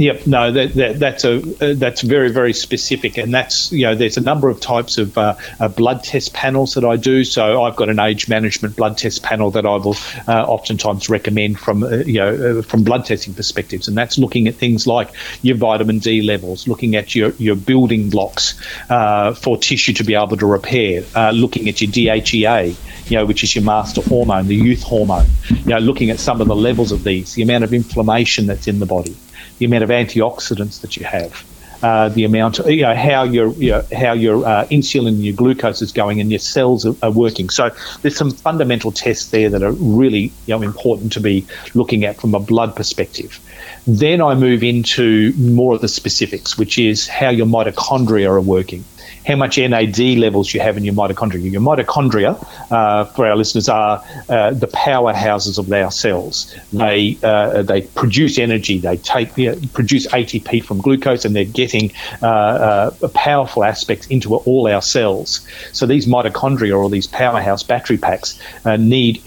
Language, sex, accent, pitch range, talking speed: English, male, Australian, 105-125 Hz, 200 wpm